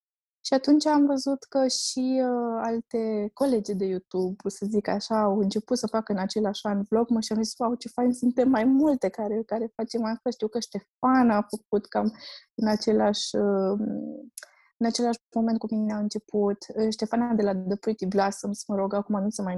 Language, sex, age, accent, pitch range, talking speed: Romanian, female, 20-39, native, 195-235 Hz, 200 wpm